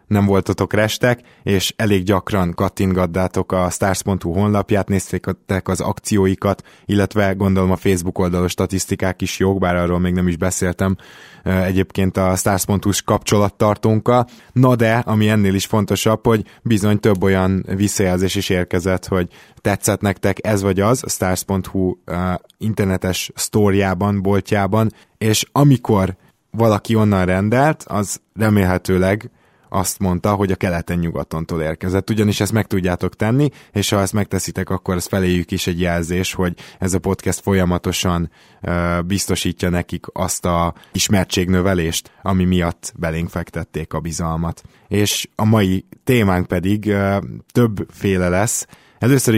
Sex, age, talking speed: male, 20-39, 130 wpm